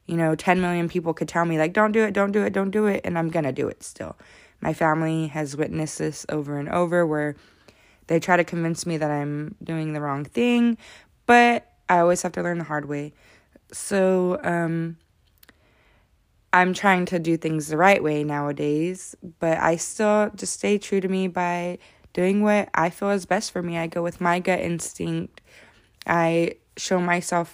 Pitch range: 160-190 Hz